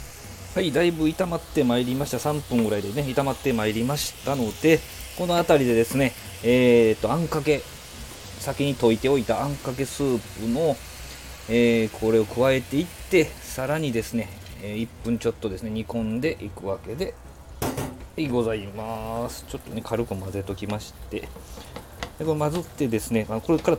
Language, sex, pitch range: Japanese, male, 100-130 Hz